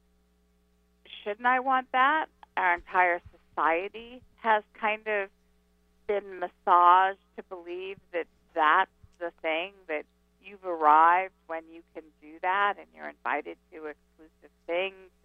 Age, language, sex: 50-69, English, female